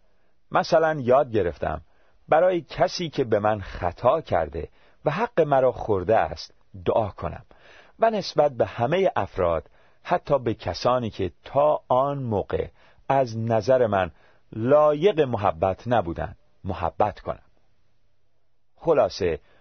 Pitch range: 95-135 Hz